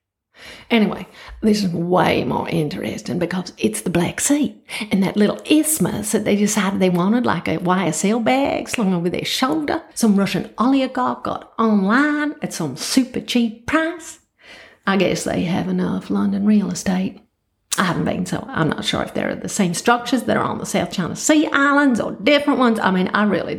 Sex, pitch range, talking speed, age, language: female, 175-250 Hz, 185 wpm, 50-69, English